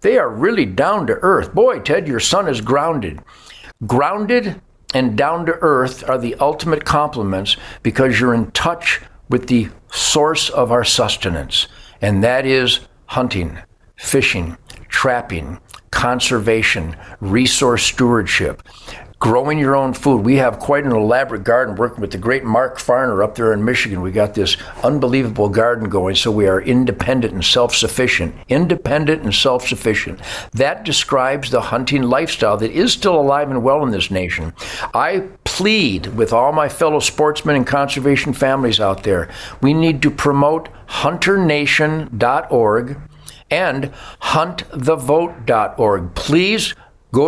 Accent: American